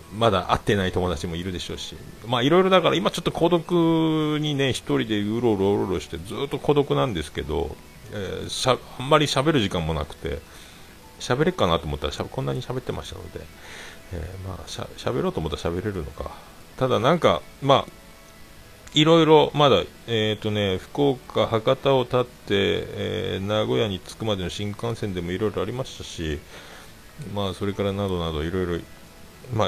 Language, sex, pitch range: Japanese, male, 85-135 Hz